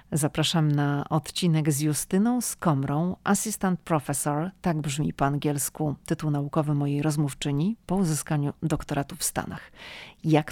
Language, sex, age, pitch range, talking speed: Polish, female, 40-59, 150-175 Hz, 130 wpm